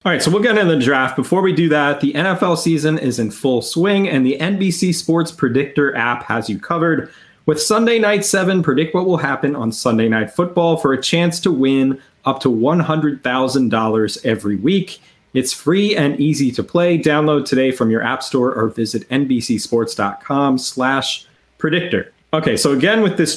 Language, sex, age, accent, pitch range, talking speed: English, male, 30-49, American, 120-155 Hz, 180 wpm